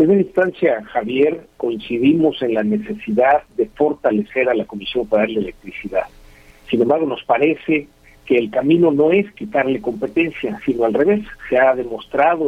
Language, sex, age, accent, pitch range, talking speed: Spanish, male, 50-69, Mexican, 115-170 Hz, 160 wpm